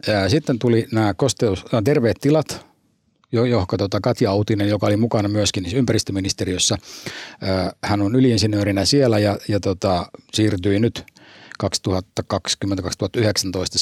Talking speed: 115 wpm